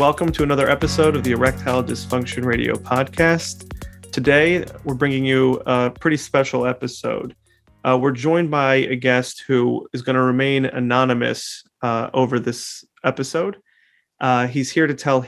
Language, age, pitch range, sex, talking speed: English, 30-49, 125-140 Hz, male, 155 wpm